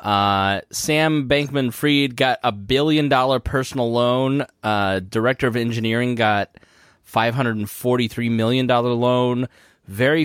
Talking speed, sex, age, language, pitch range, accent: 110 wpm, male, 20-39, English, 115-155 Hz, American